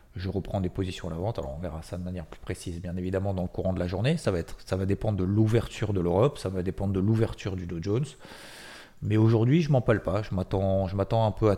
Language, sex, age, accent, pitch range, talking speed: French, male, 30-49, French, 95-115 Hz, 280 wpm